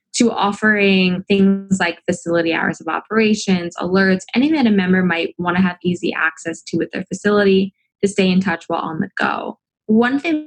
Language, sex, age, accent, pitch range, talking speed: English, female, 20-39, American, 170-200 Hz, 190 wpm